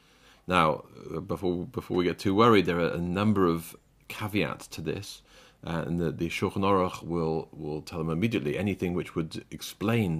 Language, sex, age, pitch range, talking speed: English, male, 40-59, 80-105 Hz, 175 wpm